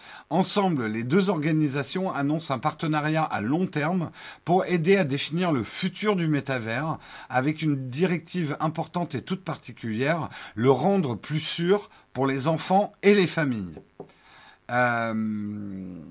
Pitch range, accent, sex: 130-180 Hz, French, male